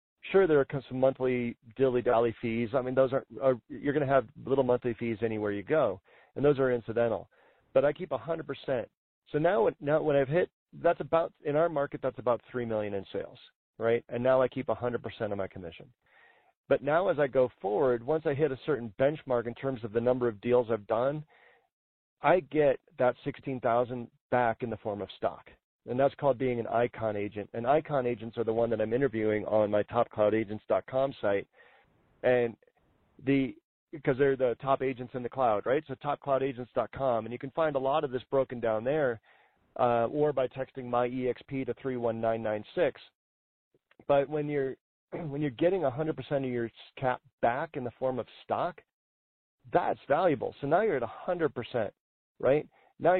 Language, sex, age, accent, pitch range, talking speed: English, male, 40-59, American, 115-140 Hz, 185 wpm